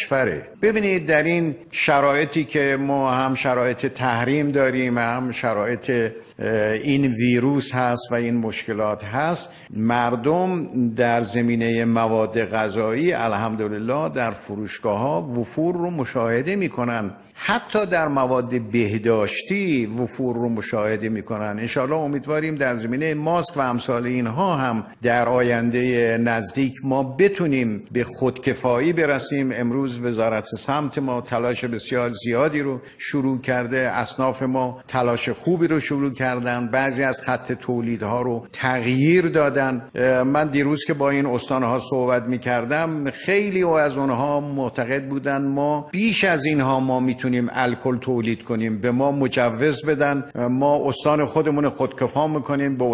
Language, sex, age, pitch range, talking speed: Persian, male, 50-69, 120-150 Hz, 130 wpm